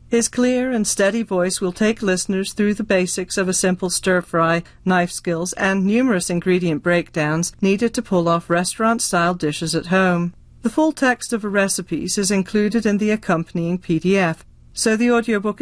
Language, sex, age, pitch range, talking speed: English, female, 40-59, 180-220 Hz, 170 wpm